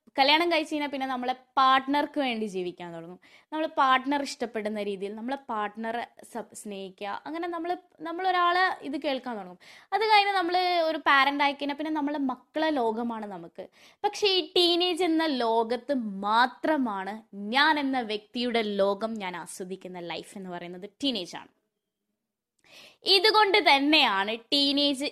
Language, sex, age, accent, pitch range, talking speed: Malayalam, female, 20-39, native, 205-315 Hz, 120 wpm